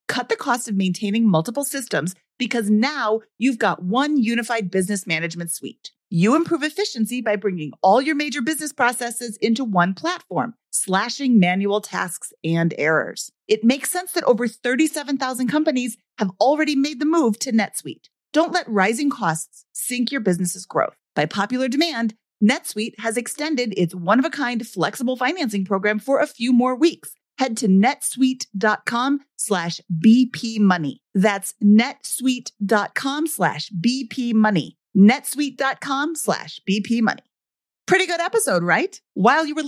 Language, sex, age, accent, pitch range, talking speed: English, female, 40-59, American, 195-280 Hz, 140 wpm